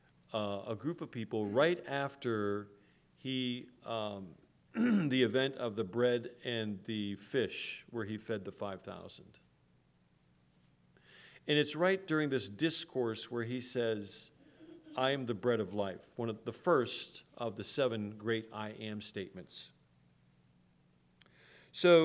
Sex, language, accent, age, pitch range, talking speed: male, English, American, 50-69, 110-145 Hz, 135 wpm